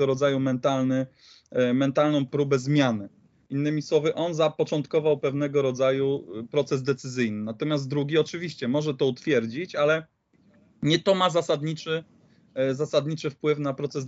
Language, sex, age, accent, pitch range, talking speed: Polish, male, 20-39, native, 135-160 Hz, 120 wpm